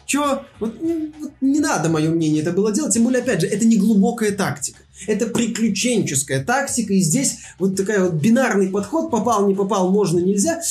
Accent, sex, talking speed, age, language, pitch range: native, male, 185 wpm, 20-39, Russian, 175-215 Hz